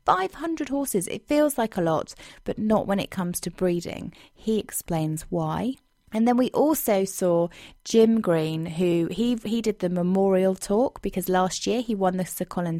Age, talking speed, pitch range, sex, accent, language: 20-39, 185 wpm, 175-225 Hz, female, British, English